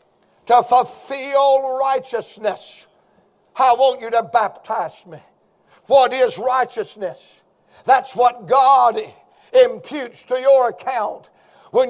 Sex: male